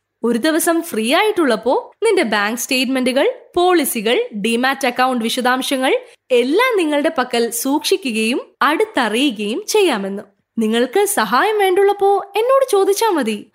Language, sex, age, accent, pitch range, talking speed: Malayalam, female, 20-39, native, 240-385 Hz, 100 wpm